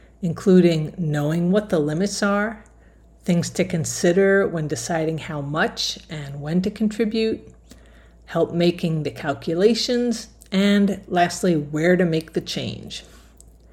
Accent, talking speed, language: American, 120 wpm, English